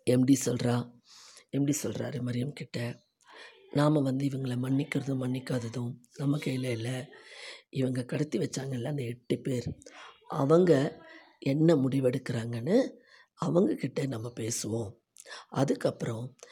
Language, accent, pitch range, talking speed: Tamil, native, 125-155 Hz, 100 wpm